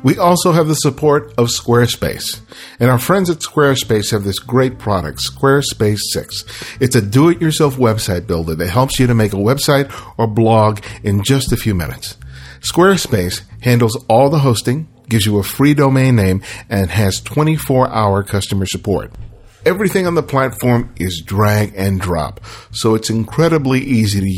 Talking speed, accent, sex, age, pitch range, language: 160 wpm, American, male, 50-69, 105-135 Hz, English